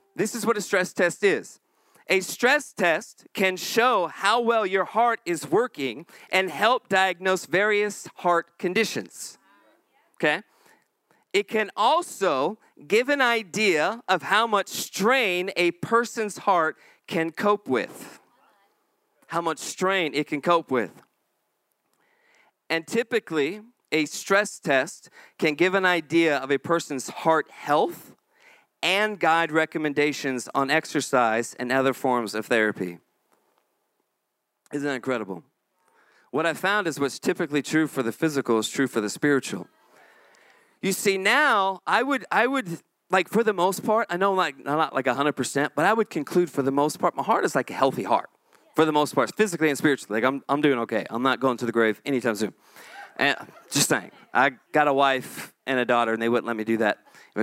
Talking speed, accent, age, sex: 170 wpm, American, 40-59, male